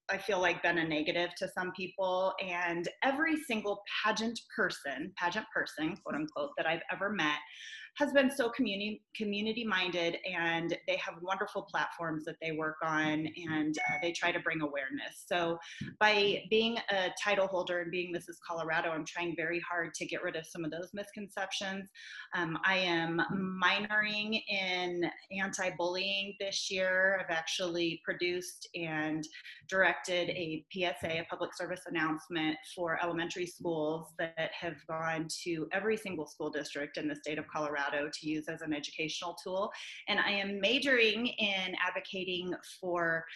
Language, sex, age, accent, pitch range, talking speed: English, female, 30-49, American, 160-190 Hz, 155 wpm